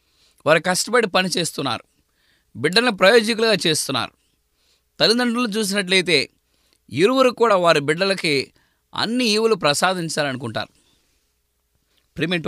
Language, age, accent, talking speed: English, 20-39, Indian, 105 wpm